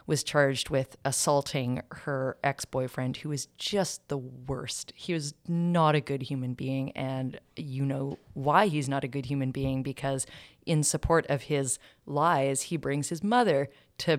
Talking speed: 165 wpm